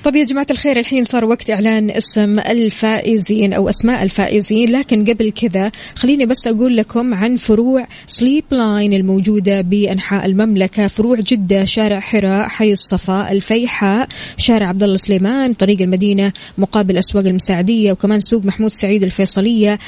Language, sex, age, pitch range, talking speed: Arabic, female, 20-39, 200-230 Hz, 145 wpm